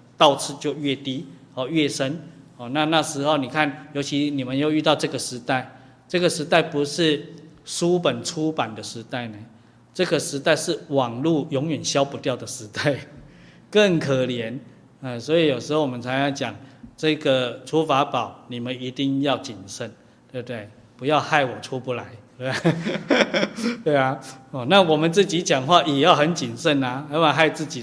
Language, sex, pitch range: Chinese, male, 120-150 Hz